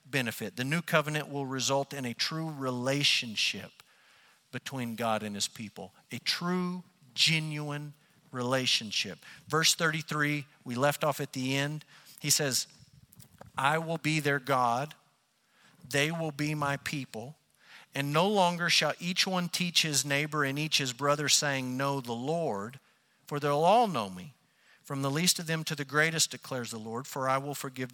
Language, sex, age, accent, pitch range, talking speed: English, male, 50-69, American, 130-165 Hz, 165 wpm